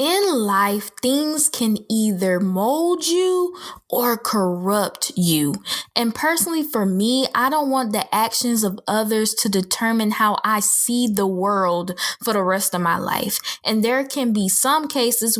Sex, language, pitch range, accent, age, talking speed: female, English, 200-260 Hz, American, 10-29, 155 wpm